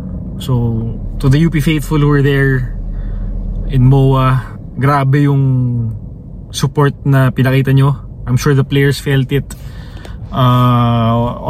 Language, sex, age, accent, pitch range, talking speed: English, male, 20-39, Filipino, 105-140 Hz, 120 wpm